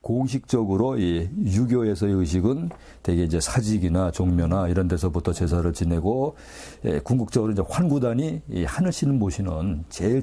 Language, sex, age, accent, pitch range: Korean, male, 50-69, native, 85-115 Hz